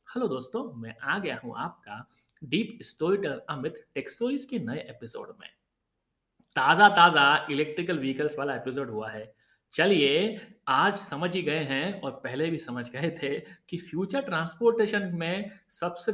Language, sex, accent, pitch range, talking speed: Hindi, male, native, 145-205 Hz, 80 wpm